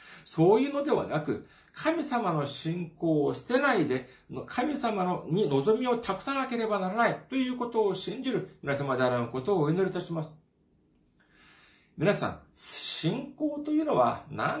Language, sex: Japanese, male